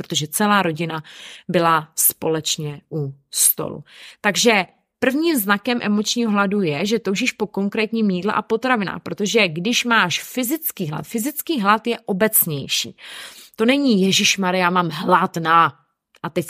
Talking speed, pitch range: 140 wpm, 175-230 Hz